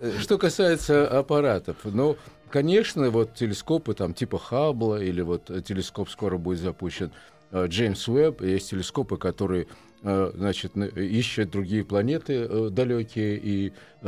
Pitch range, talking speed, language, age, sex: 95-130 Hz, 115 wpm, Russian, 50-69, male